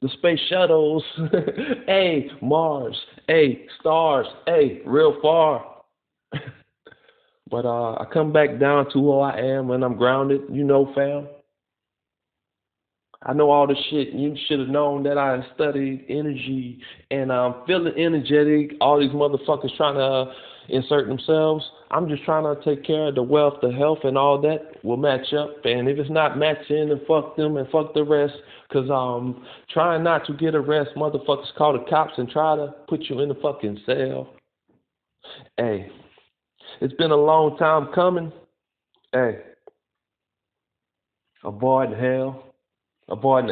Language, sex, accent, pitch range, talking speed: English, male, American, 130-155 Hz, 155 wpm